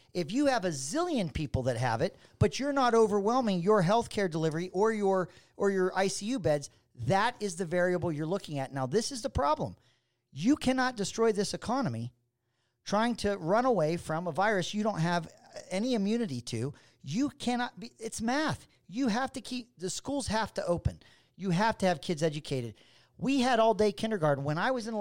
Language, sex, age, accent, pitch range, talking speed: English, male, 40-59, American, 155-225 Hz, 195 wpm